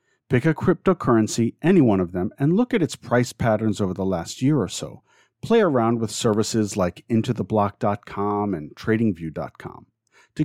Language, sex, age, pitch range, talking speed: English, male, 50-69, 105-145 Hz, 160 wpm